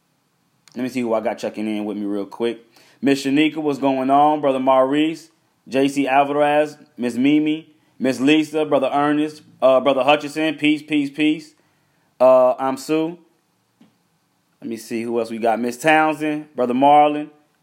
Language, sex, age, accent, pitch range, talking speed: English, male, 20-39, American, 110-135 Hz, 160 wpm